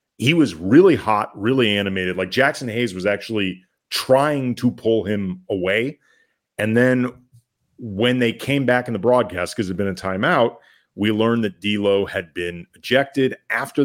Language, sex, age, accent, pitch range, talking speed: English, male, 40-59, American, 95-120 Hz, 165 wpm